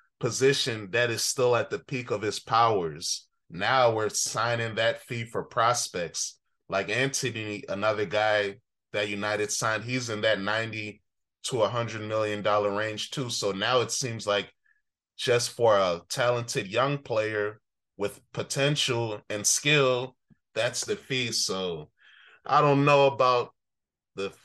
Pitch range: 110-135 Hz